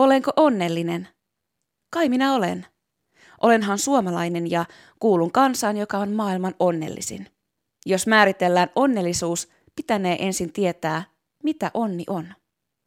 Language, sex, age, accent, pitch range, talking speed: Finnish, female, 20-39, native, 170-225 Hz, 105 wpm